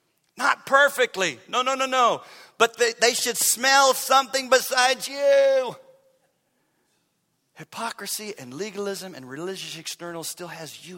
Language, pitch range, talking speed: English, 140-205 Hz, 125 wpm